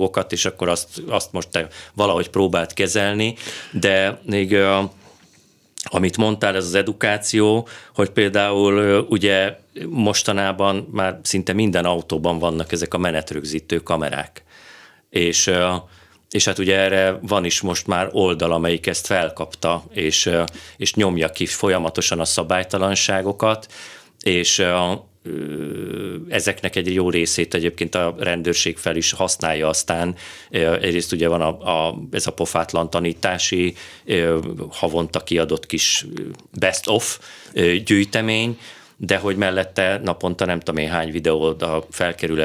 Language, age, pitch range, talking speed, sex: Hungarian, 40-59, 85-100 Hz, 120 wpm, male